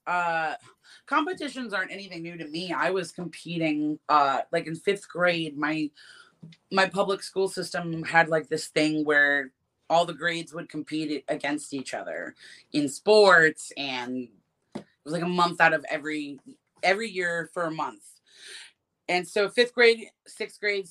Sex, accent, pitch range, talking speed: female, American, 150-195 Hz, 160 wpm